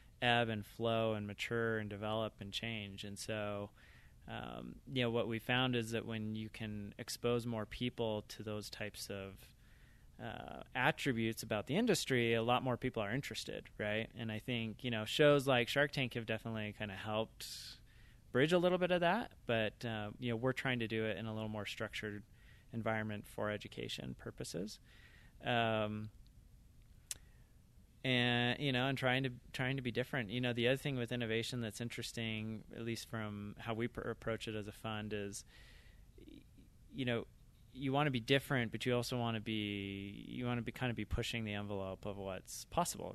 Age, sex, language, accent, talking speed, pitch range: 20-39, male, English, American, 190 wpm, 105-125 Hz